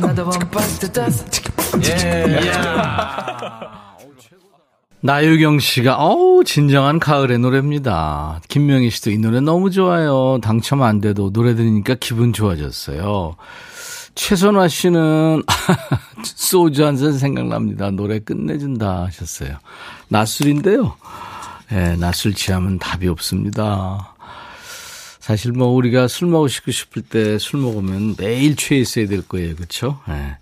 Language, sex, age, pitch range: Korean, male, 40-59, 100-155 Hz